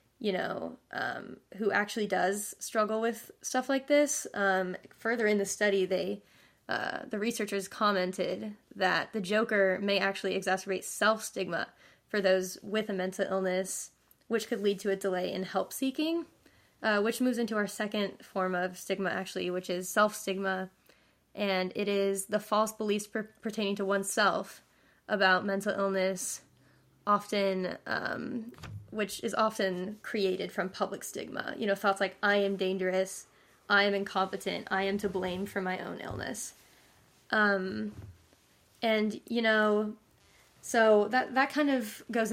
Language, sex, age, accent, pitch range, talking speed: English, female, 10-29, American, 190-215 Hz, 145 wpm